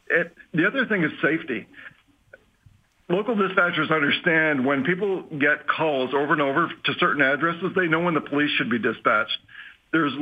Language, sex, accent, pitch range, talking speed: English, male, American, 130-170 Hz, 165 wpm